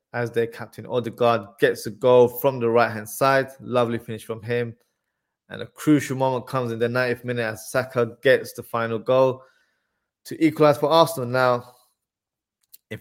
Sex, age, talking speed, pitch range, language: male, 20-39, 165 wpm, 115-135 Hz, English